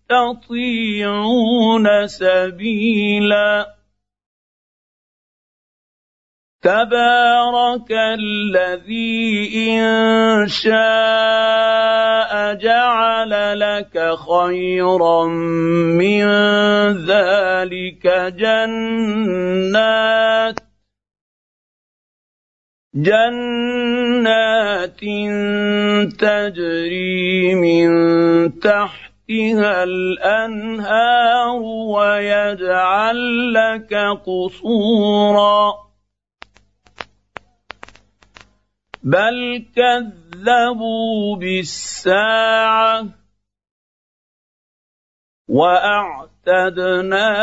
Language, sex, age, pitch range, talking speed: Arabic, male, 50-69, 185-225 Hz, 30 wpm